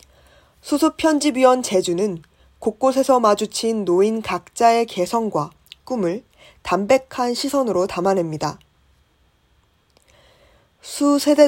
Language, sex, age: Korean, female, 20-39